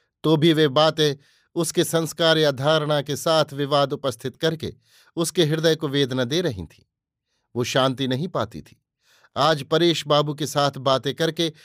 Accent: native